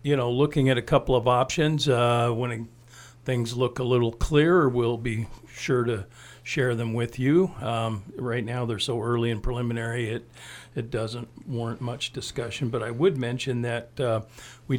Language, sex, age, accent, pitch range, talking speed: English, male, 50-69, American, 115-130 Hz, 185 wpm